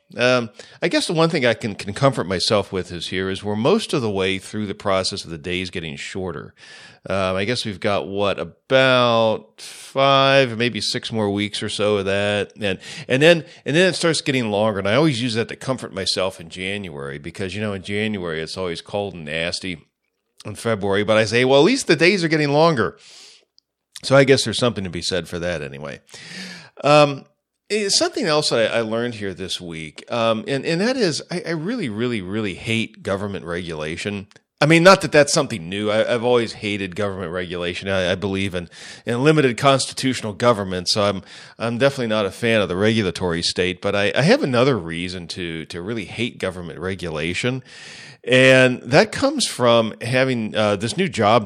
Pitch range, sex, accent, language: 95-130 Hz, male, American, English